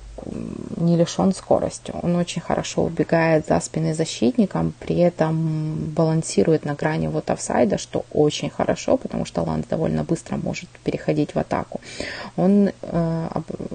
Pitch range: 145-180 Hz